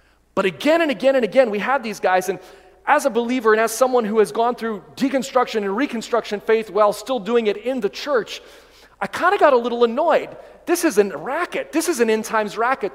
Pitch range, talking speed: 180-255 Hz, 225 wpm